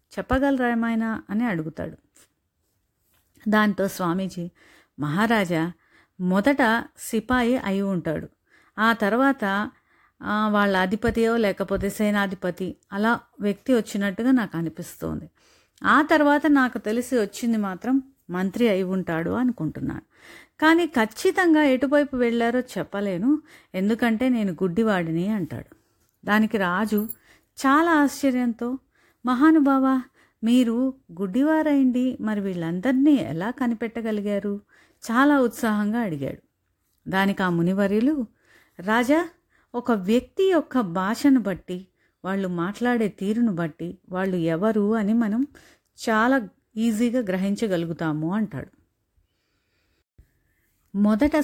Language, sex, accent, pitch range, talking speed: Telugu, female, native, 190-250 Hz, 90 wpm